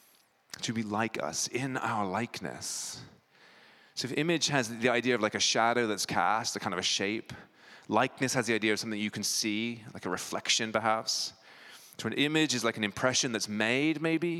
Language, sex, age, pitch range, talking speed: English, male, 30-49, 105-130 Hz, 195 wpm